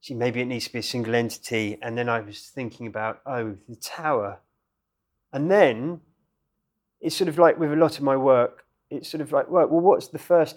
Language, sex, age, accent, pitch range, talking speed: English, male, 30-49, British, 115-140 Hz, 215 wpm